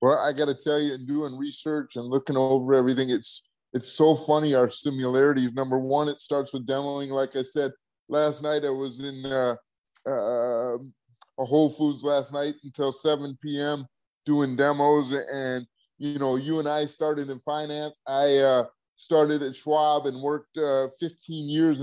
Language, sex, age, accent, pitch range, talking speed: English, male, 30-49, American, 140-160 Hz, 175 wpm